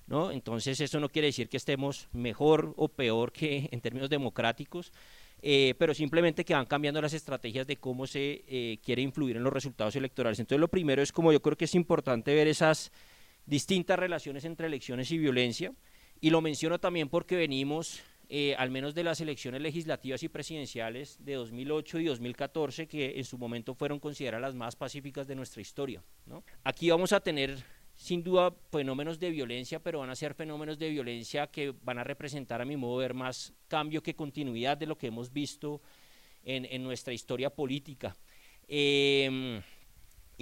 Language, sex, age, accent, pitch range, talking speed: Spanish, male, 30-49, Colombian, 130-160 Hz, 185 wpm